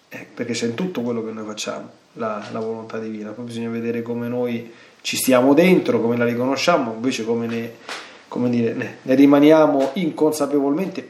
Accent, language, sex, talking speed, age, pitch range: native, Italian, male, 155 wpm, 40-59, 115-150 Hz